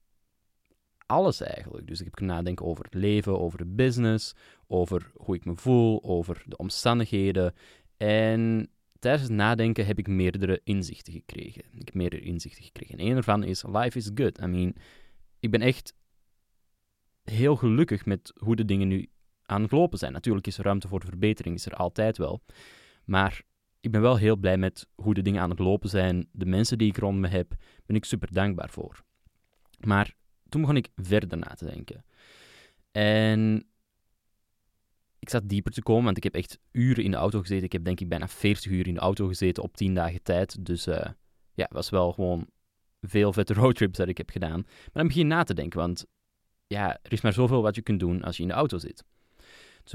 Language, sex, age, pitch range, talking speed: Dutch, male, 20-39, 95-110 Hz, 205 wpm